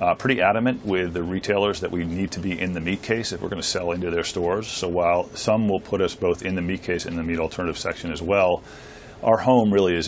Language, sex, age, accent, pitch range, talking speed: English, male, 40-59, American, 85-100 Hz, 270 wpm